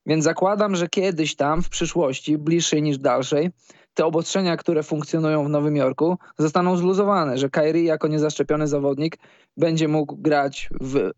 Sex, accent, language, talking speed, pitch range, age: male, native, Polish, 150 wpm, 140-165 Hz, 20-39